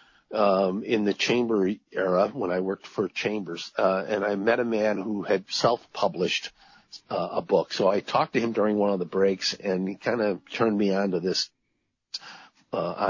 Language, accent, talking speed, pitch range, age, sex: English, American, 195 wpm, 95-110 Hz, 50-69, male